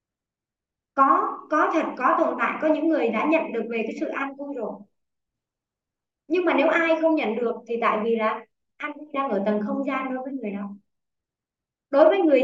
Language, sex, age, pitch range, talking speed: Vietnamese, male, 20-39, 220-305 Hz, 205 wpm